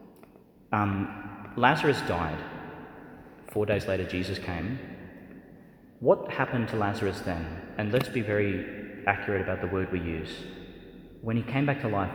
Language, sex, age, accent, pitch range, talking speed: English, male, 30-49, Australian, 90-110 Hz, 145 wpm